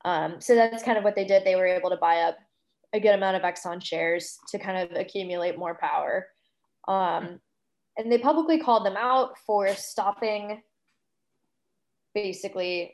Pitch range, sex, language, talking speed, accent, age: 180-220 Hz, female, English, 165 wpm, American, 10-29